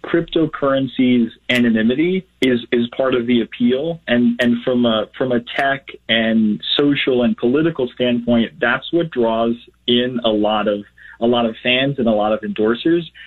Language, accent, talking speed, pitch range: English, American, 165 wpm, 115-135 Hz